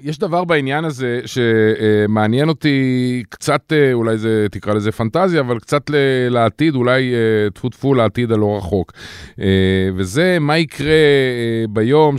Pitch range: 105-135 Hz